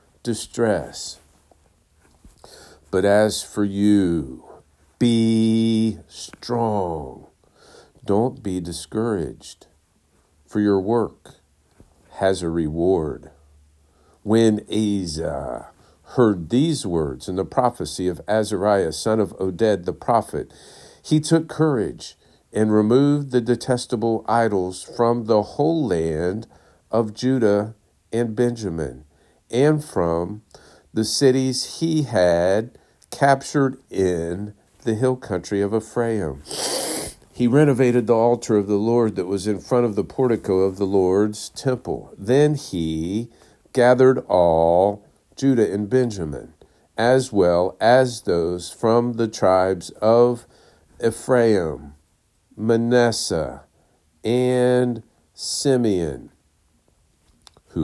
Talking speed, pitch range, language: 100 wpm, 90-120 Hz, English